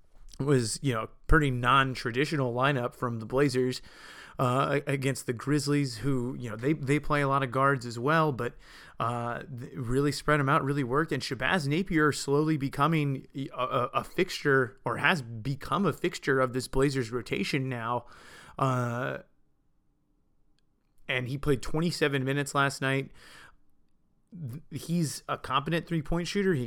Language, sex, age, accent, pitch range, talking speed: English, male, 30-49, American, 125-150 Hz, 145 wpm